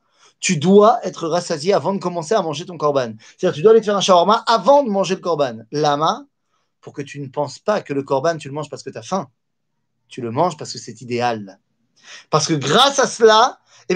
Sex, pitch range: male, 140-220 Hz